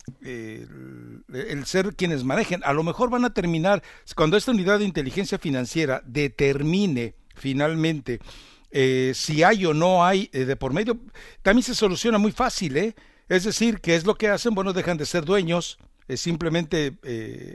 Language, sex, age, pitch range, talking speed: English, male, 60-79, 145-200 Hz, 170 wpm